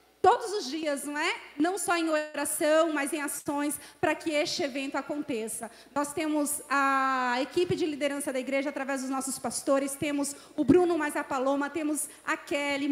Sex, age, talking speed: female, 30-49, 175 wpm